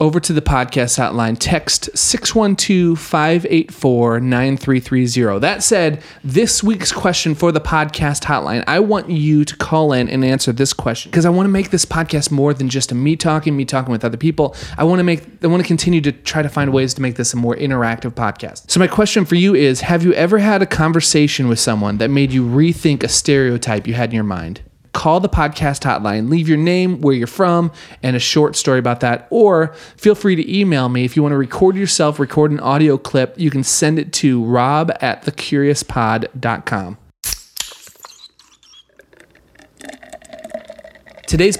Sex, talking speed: male, 190 wpm